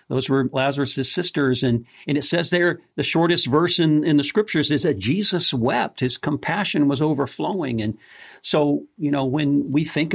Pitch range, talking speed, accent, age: 120-150 Hz, 185 wpm, American, 50-69